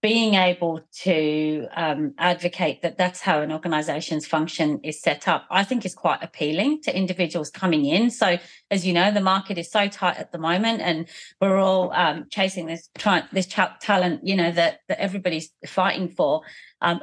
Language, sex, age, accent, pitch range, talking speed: English, female, 30-49, British, 160-190 Hz, 180 wpm